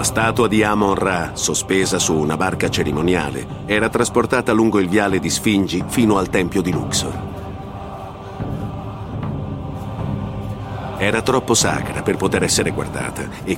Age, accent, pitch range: 50-69, native, 90-105 Hz